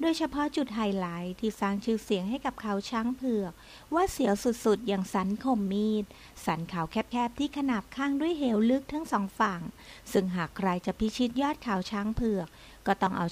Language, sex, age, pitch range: Thai, female, 60-79, 195-245 Hz